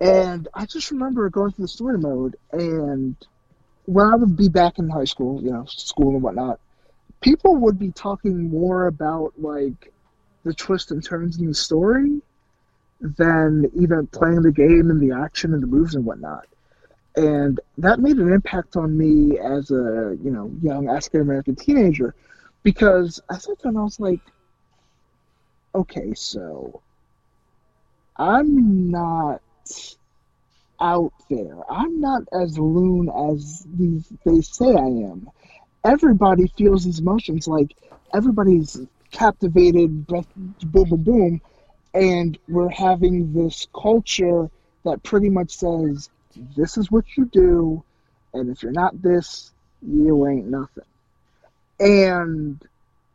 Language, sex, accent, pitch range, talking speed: English, male, American, 150-195 Hz, 135 wpm